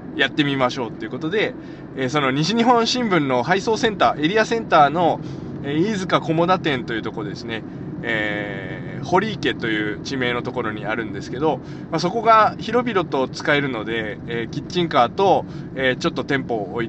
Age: 20-39